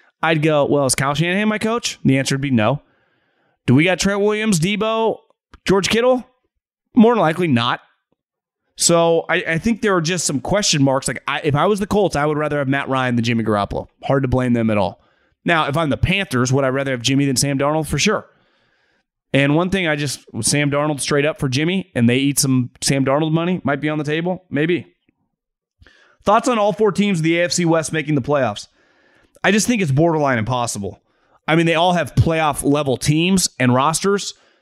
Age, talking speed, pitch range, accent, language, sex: 30-49, 215 wpm, 130-180 Hz, American, English, male